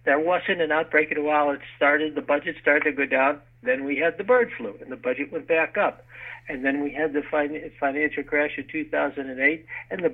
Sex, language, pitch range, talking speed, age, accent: male, English, 130-185 Hz, 225 wpm, 60-79, American